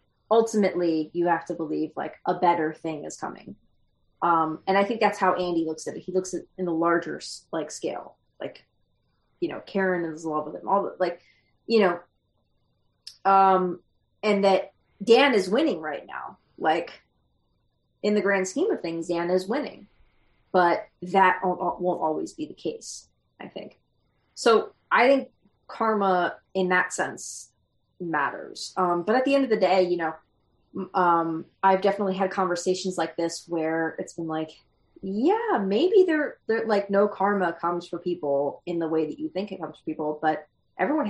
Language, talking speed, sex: English, 180 wpm, female